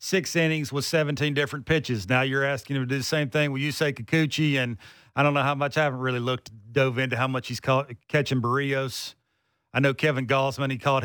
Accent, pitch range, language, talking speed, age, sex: American, 125-160 Hz, English, 235 wpm, 50-69, male